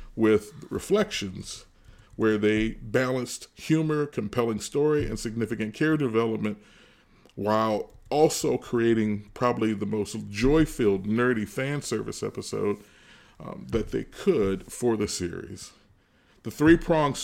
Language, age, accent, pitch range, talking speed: English, 40-59, American, 105-125 Hz, 110 wpm